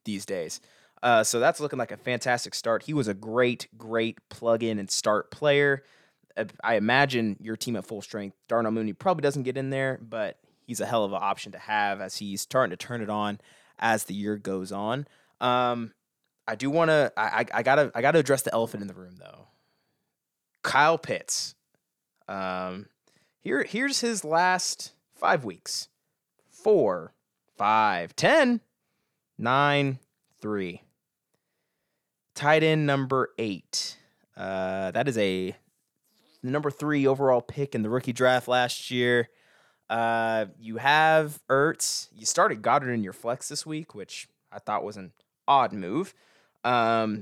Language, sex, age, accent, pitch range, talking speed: English, male, 20-39, American, 105-140 Hz, 155 wpm